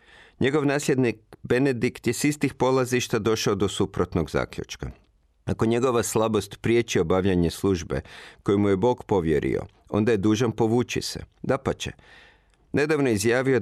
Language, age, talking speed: Croatian, 50-69, 130 wpm